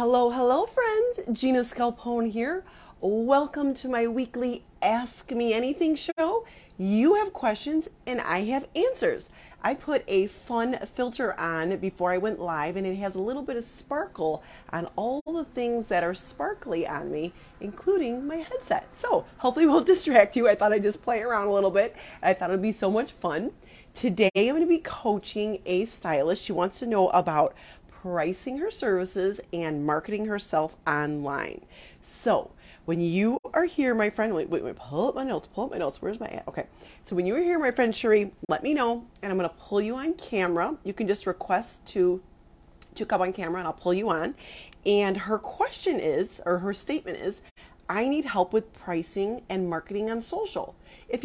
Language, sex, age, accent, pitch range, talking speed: English, female, 30-49, American, 190-285 Hz, 190 wpm